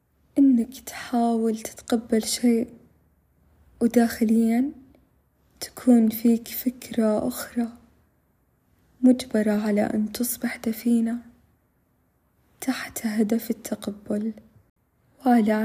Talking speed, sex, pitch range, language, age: 70 wpm, female, 215-240 Hz, Arabic, 20-39